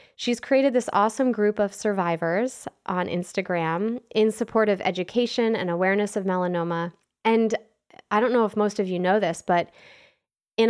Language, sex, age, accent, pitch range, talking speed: English, female, 20-39, American, 190-245 Hz, 165 wpm